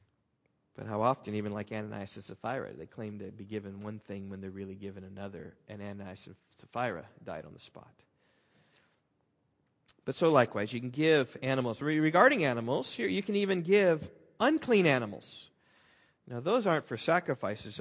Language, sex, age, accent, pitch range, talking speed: English, male, 40-59, American, 125-195 Hz, 165 wpm